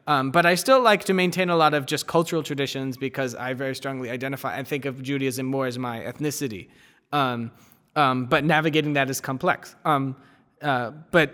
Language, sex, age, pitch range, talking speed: English, male, 20-39, 130-155 Hz, 190 wpm